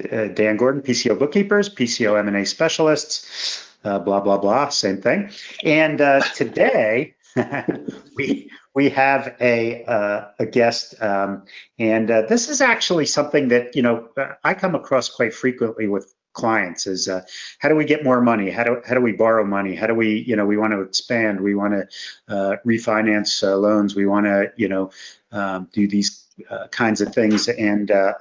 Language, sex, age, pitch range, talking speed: English, male, 50-69, 105-135 Hz, 185 wpm